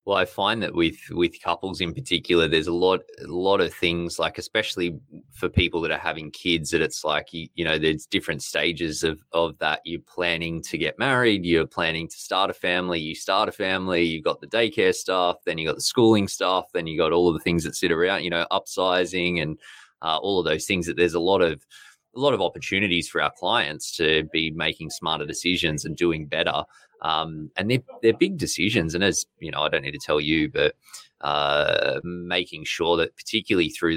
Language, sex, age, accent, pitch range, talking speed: English, male, 20-39, Australian, 80-90 Hz, 215 wpm